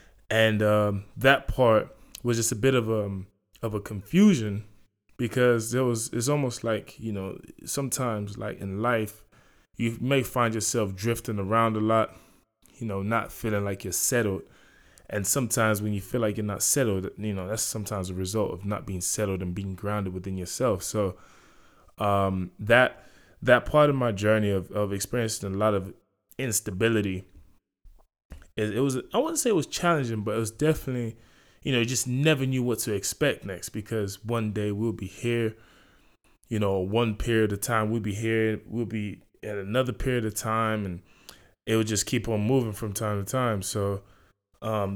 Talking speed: 180 wpm